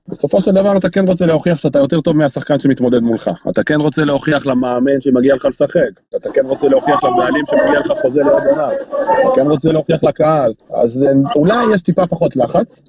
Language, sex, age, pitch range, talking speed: Hebrew, male, 30-49, 135-185 Hz, 190 wpm